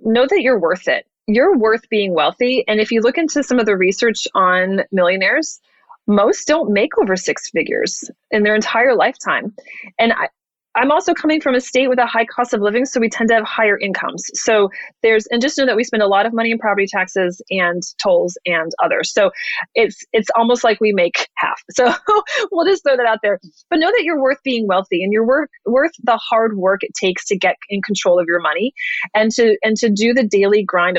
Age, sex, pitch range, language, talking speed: 30-49, female, 190-245 Hz, English, 225 wpm